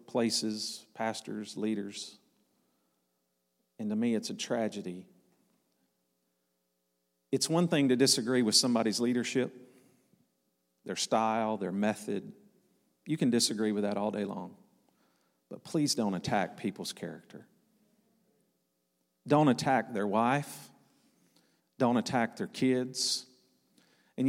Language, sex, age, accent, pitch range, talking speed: English, male, 40-59, American, 100-135 Hz, 110 wpm